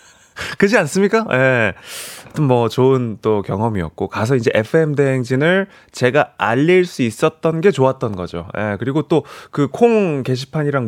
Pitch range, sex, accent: 110-165 Hz, male, native